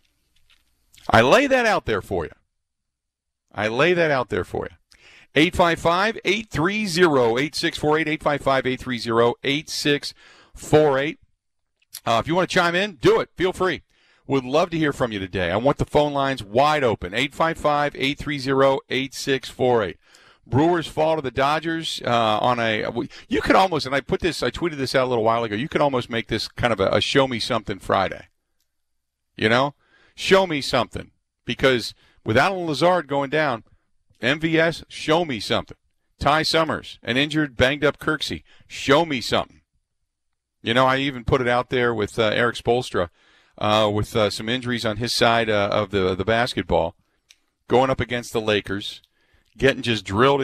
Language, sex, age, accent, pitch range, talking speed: English, male, 50-69, American, 105-145 Hz, 160 wpm